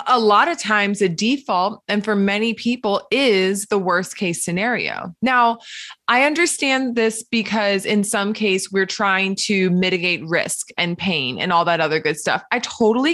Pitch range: 185-240 Hz